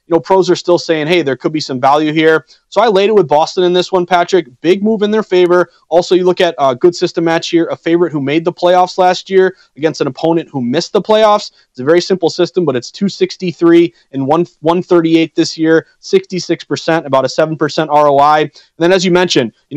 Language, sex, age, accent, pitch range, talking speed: English, male, 30-49, American, 155-180 Hz, 230 wpm